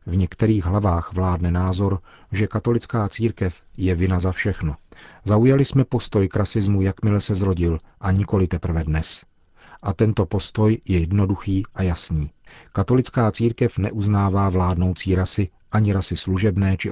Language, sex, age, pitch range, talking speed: Czech, male, 40-59, 90-105 Hz, 140 wpm